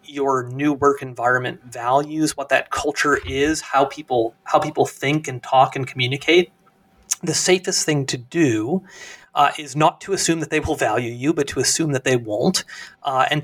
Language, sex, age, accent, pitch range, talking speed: English, male, 30-49, American, 130-160 Hz, 185 wpm